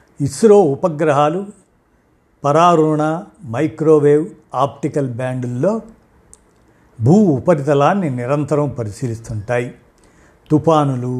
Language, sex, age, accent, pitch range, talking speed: Telugu, male, 50-69, native, 125-155 Hz, 60 wpm